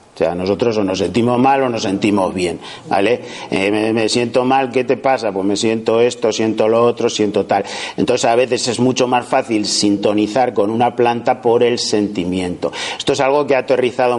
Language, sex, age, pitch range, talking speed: Spanish, male, 50-69, 110-130 Hz, 205 wpm